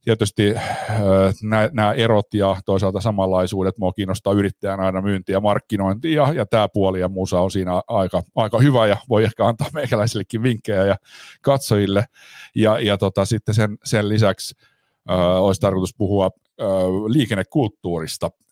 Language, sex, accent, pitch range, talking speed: Finnish, male, native, 95-120 Hz, 145 wpm